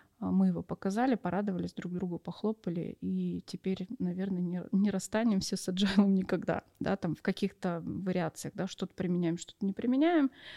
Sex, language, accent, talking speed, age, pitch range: female, Russian, native, 150 wpm, 20-39, 180-210 Hz